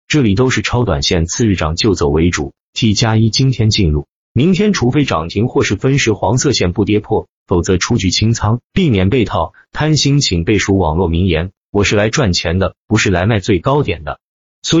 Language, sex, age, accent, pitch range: Chinese, male, 30-49, native, 90-125 Hz